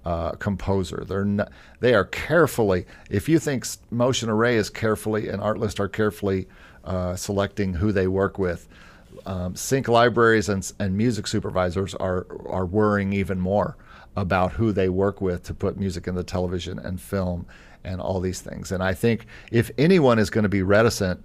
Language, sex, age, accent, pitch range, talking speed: English, male, 50-69, American, 95-105 Hz, 180 wpm